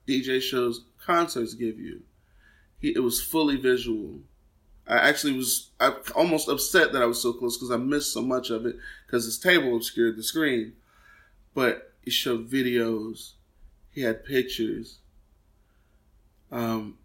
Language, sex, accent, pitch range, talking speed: English, male, American, 115-140 Hz, 150 wpm